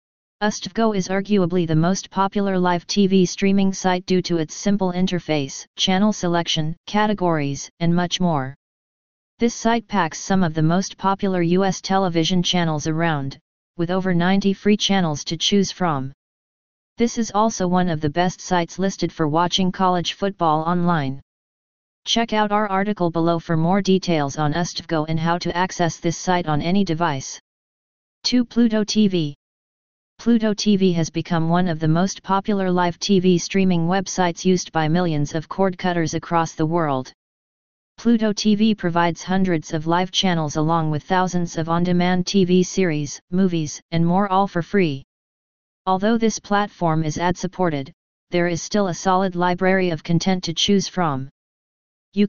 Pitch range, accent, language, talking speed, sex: 165-195 Hz, American, English, 155 wpm, female